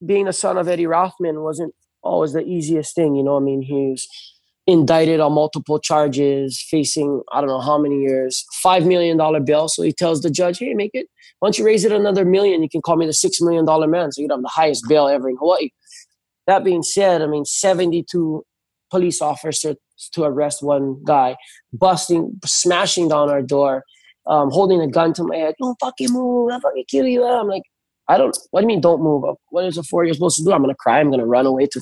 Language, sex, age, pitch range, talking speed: English, male, 20-39, 140-180 Hz, 240 wpm